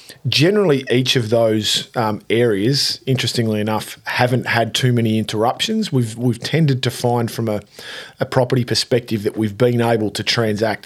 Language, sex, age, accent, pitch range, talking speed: English, male, 40-59, Australian, 110-130 Hz, 160 wpm